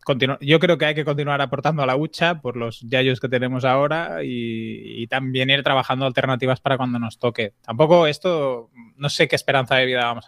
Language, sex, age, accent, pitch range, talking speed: Spanish, male, 20-39, Spanish, 120-140 Hz, 205 wpm